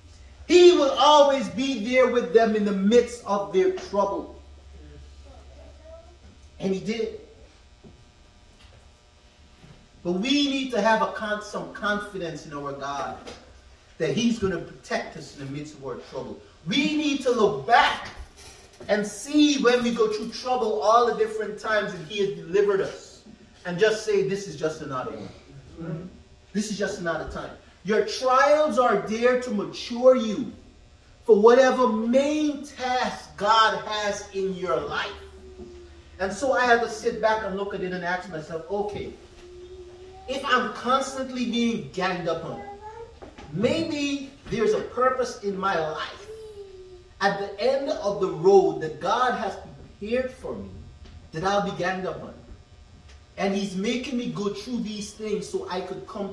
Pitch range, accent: 185-255 Hz, American